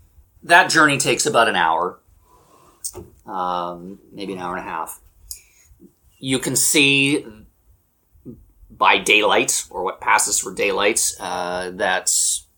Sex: male